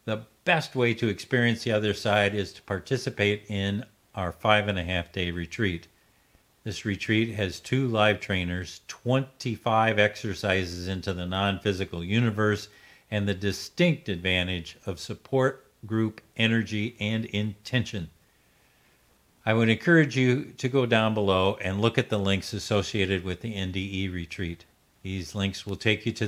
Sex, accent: male, American